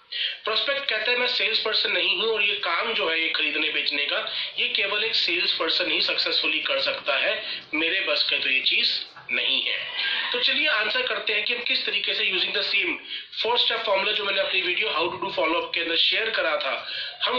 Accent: native